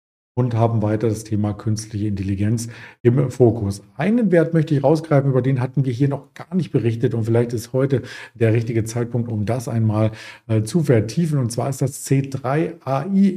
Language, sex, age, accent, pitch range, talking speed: German, male, 50-69, German, 110-140 Hz, 185 wpm